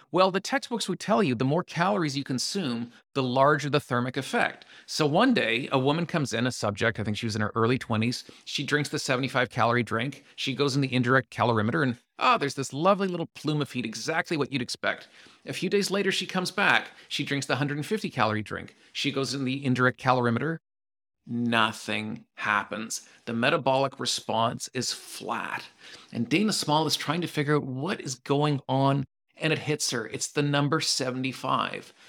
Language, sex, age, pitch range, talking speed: English, male, 40-59, 130-165 Hz, 190 wpm